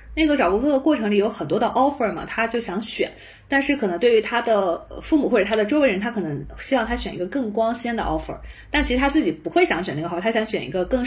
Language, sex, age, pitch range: Chinese, female, 20-39, 190-260 Hz